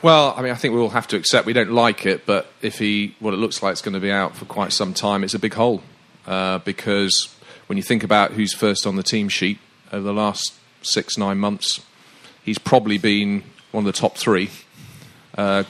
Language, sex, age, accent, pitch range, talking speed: English, male, 40-59, British, 100-110 Hz, 235 wpm